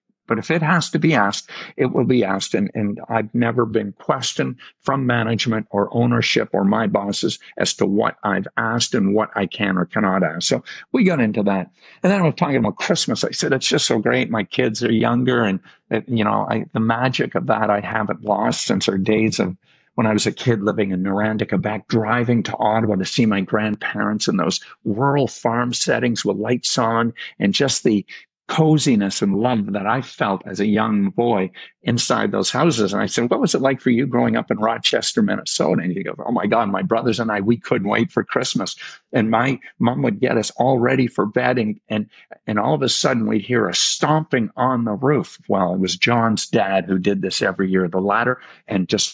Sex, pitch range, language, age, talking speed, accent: male, 105-125 Hz, English, 50-69, 220 wpm, American